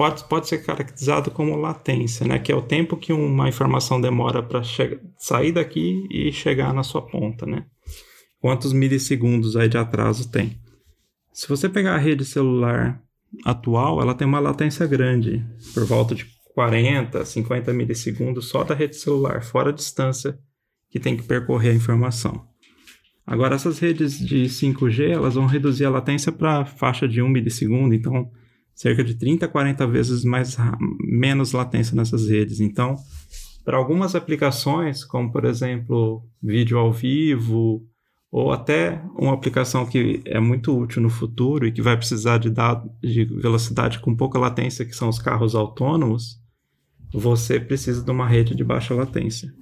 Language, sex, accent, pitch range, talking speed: Portuguese, male, Brazilian, 115-140 Hz, 160 wpm